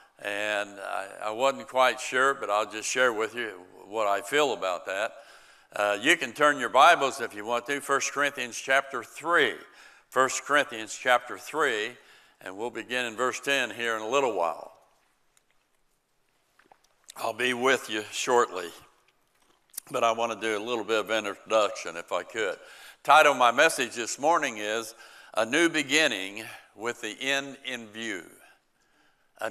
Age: 60-79